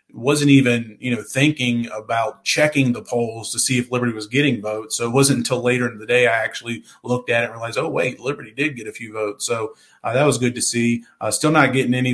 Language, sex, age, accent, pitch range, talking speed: English, male, 30-49, American, 115-135 Hz, 250 wpm